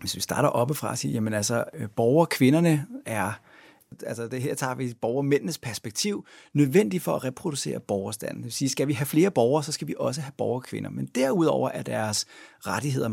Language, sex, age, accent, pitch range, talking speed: Danish, male, 30-49, native, 115-145 Hz, 190 wpm